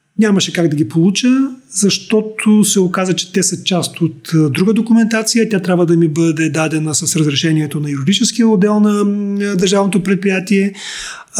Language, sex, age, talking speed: Bulgarian, male, 30-49, 155 wpm